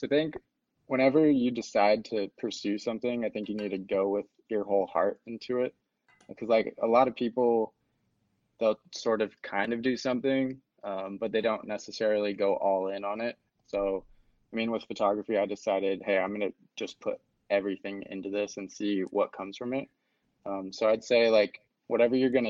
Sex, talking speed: male, 195 wpm